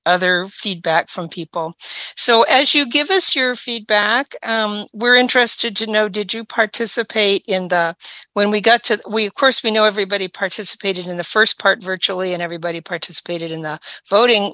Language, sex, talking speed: English, female, 180 wpm